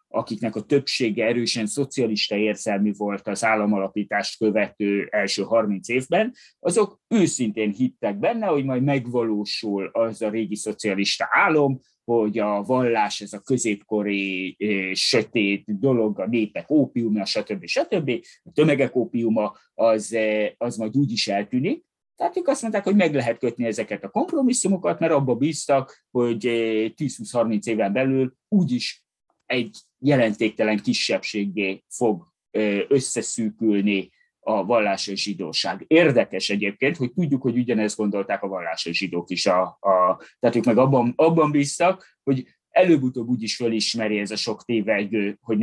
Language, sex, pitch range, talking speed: Hungarian, male, 105-130 Hz, 135 wpm